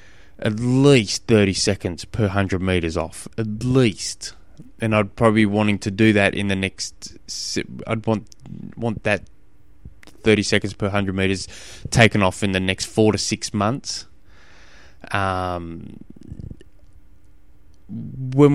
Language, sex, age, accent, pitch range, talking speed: English, male, 20-39, Australian, 95-120 Hz, 135 wpm